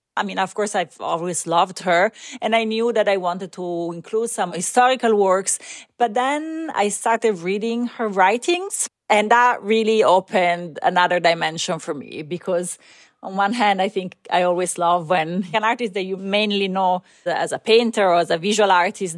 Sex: female